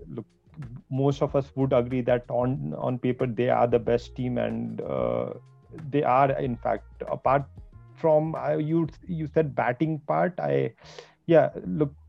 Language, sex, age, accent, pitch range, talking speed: English, male, 30-49, Indian, 120-150 Hz, 160 wpm